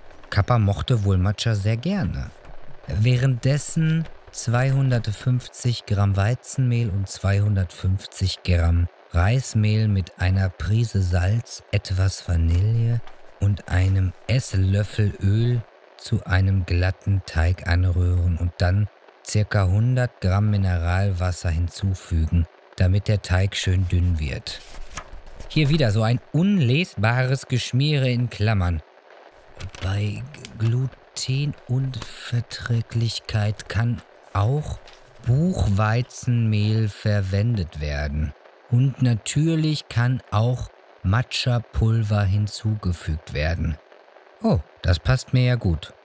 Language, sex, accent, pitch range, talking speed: German, male, German, 95-120 Hz, 90 wpm